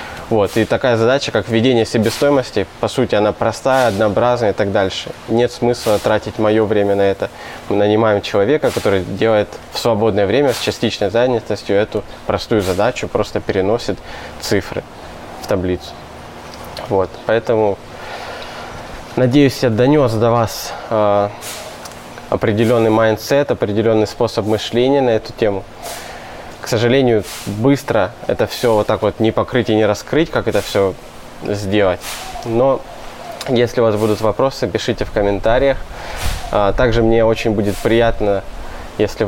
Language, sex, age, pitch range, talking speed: Russian, male, 20-39, 105-120 Hz, 135 wpm